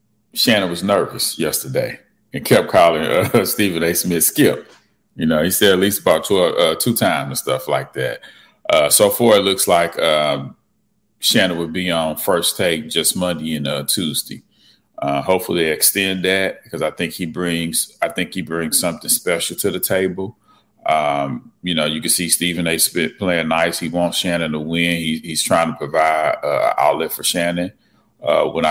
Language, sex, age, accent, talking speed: English, male, 30-49, American, 190 wpm